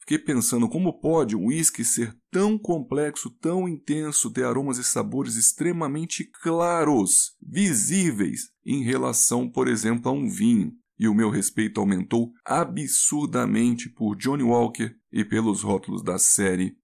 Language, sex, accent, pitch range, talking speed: Portuguese, male, Brazilian, 120-185 Hz, 140 wpm